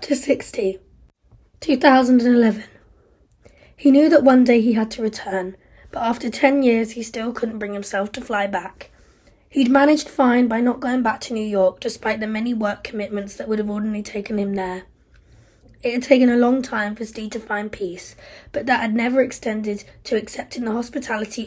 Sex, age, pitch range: female, 20-39, 205-245 Hz